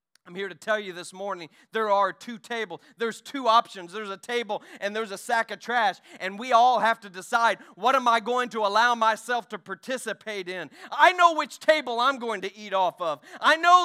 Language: English